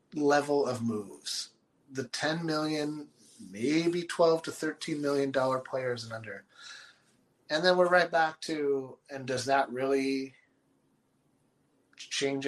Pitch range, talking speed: 120-150 Hz, 125 wpm